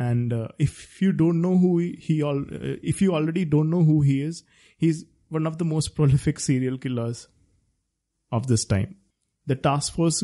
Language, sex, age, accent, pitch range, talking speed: English, male, 20-39, Indian, 120-150 Hz, 180 wpm